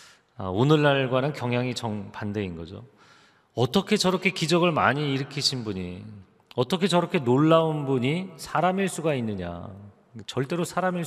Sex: male